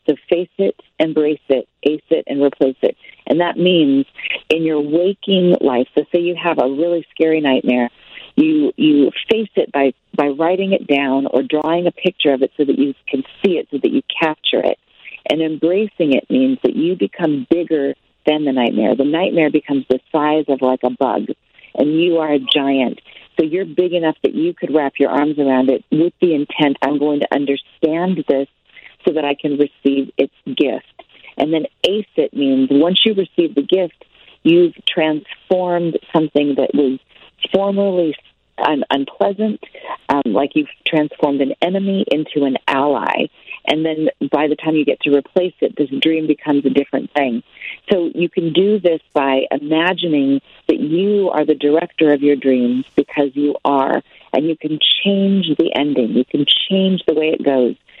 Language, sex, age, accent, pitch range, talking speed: English, female, 40-59, American, 140-180 Hz, 180 wpm